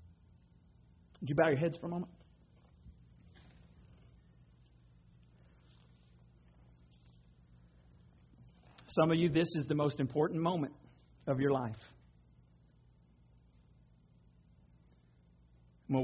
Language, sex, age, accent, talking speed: English, male, 40-59, American, 80 wpm